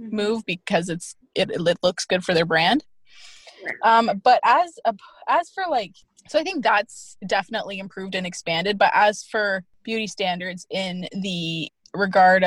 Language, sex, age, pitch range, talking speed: English, female, 20-39, 180-225 Hz, 160 wpm